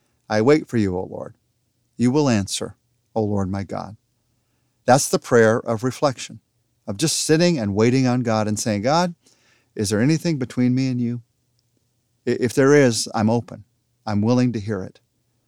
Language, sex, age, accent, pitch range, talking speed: English, male, 50-69, American, 115-140 Hz, 175 wpm